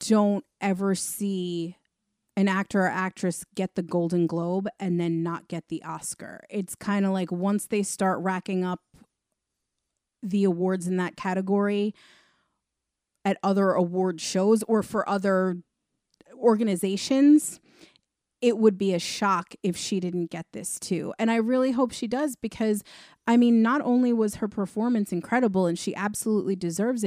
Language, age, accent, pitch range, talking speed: English, 30-49, American, 185-235 Hz, 155 wpm